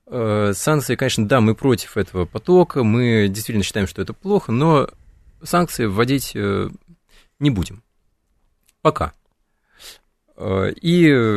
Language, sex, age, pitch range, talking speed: Russian, male, 20-39, 100-130 Hz, 105 wpm